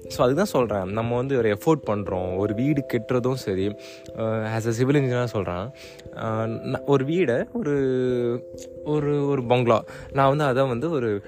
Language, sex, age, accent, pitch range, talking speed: Tamil, male, 20-39, native, 110-140 Hz, 155 wpm